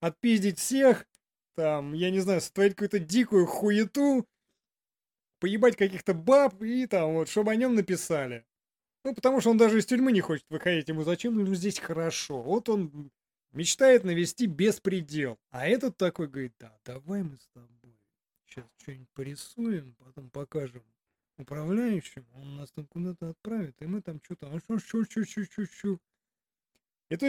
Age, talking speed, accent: 30-49, 150 wpm, native